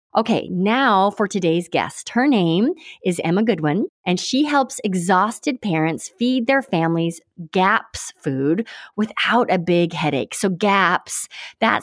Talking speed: 135 wpm